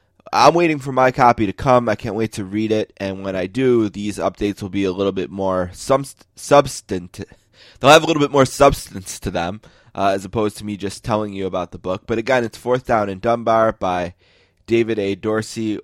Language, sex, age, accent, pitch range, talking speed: English, male, 20-39, American, 95-115 Hz, 215 wpm